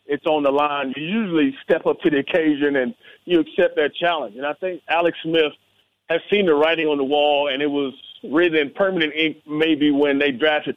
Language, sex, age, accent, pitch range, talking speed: English, male, 30-49, American, 145-175 Hz, 215 wpm